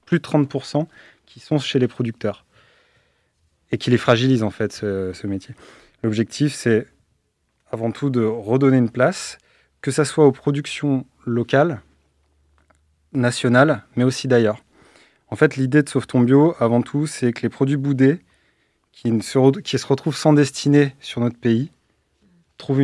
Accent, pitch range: French, 110-140 Hz